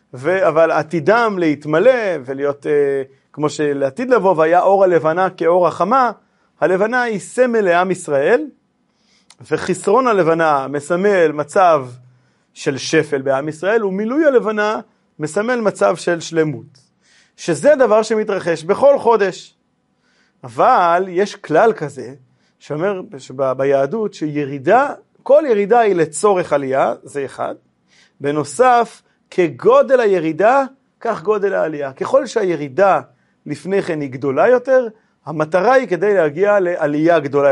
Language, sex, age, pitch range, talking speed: Hebrew, male, 30-49, 145-210 Hz, 115 wpm